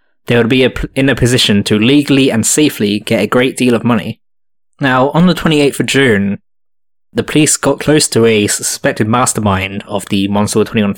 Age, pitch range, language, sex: 20-39, 105-130 Hz, English, male